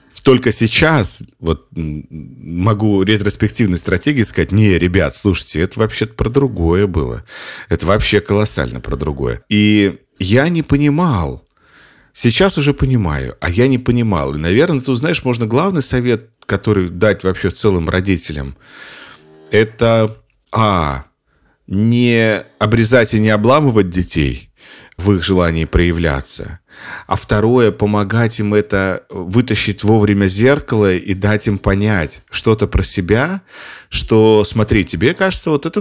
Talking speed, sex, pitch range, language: 125 wpm, male, 90-120 Hz, Russian